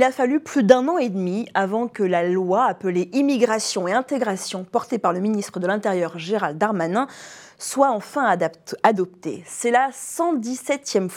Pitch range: 185-255 Hz